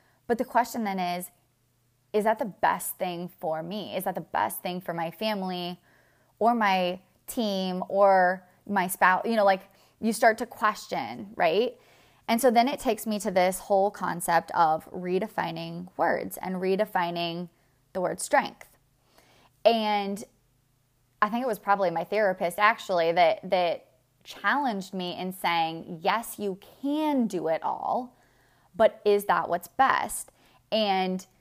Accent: American